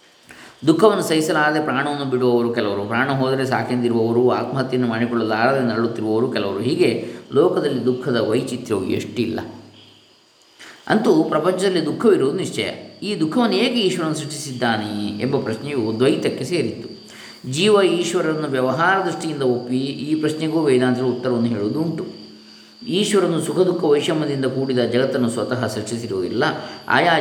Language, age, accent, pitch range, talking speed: Kannada, 20-39, native, 120-155 Hz, 110 wpm